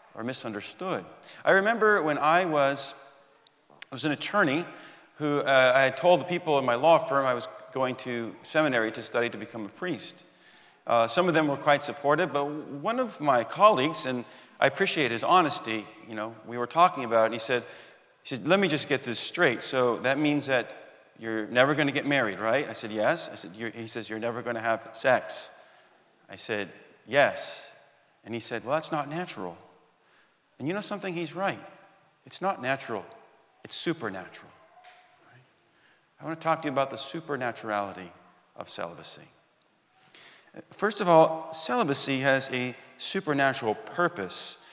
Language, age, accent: English, 40-59, American